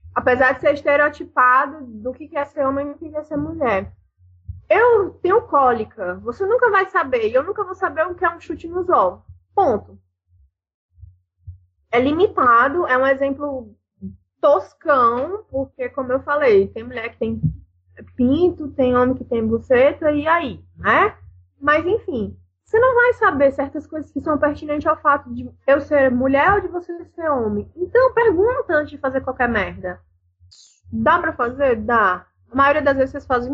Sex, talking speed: female, 170 wpm